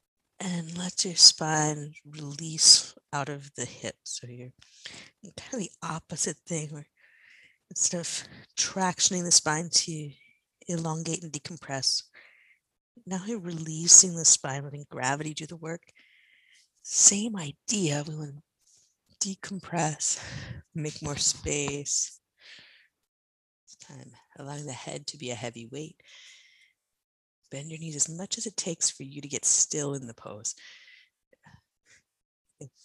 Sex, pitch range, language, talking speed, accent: female, 135-170 Hz, English, 130 wpm, American